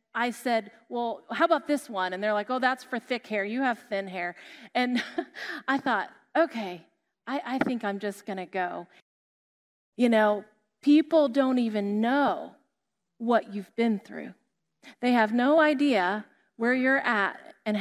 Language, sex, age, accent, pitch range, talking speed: English, female, 30-49, American, 215-300 Hz, 160 wpm